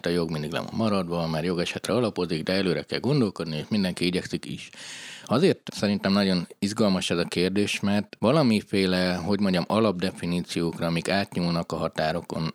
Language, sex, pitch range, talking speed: Hungarian, male, 85-105 Hz, 160 wpm